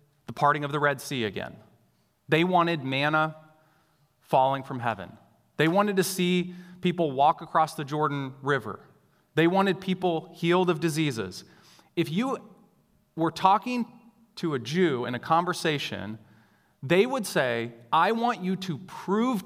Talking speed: 145 wpm